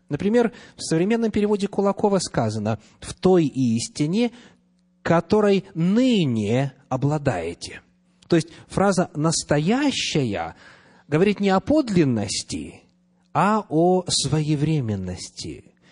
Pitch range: 125-180 Hz